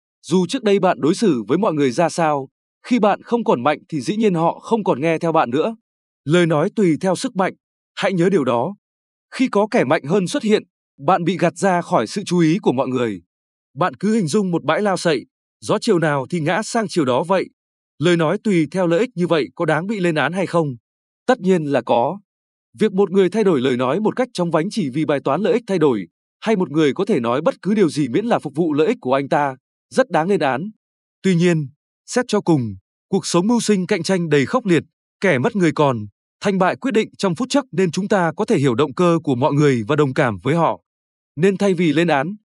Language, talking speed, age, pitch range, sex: Vietnamese, 250 wpm, 20-39, 155-205 Hz, male